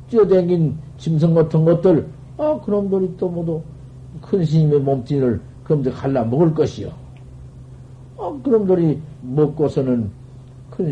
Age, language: 50-69, Korean